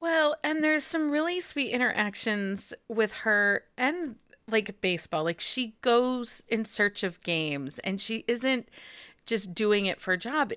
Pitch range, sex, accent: 175-235 Hz, female, American